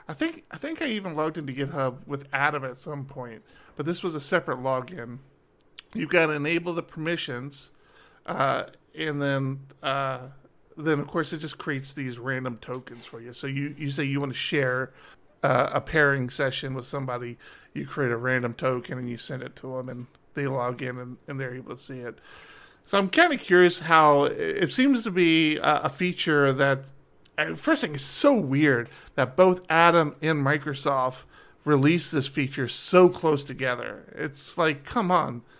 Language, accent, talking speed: English, American, 185 wpm